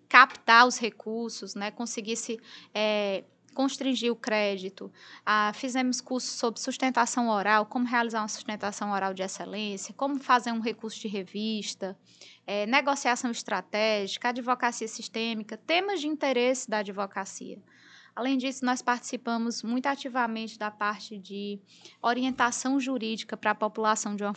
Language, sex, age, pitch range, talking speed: Portuguese, female, 20-39, 205-245 Hz, 130 wpm